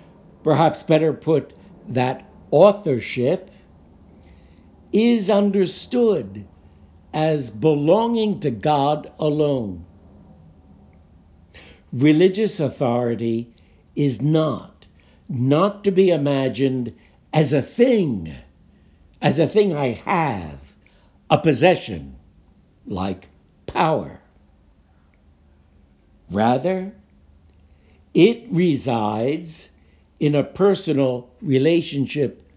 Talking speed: 70 wpm